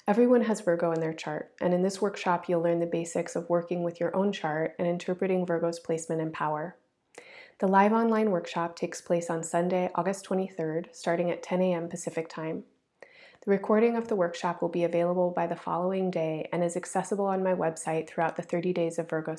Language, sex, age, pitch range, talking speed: English, female, 30-49, 170-195 Hz, 205 wpm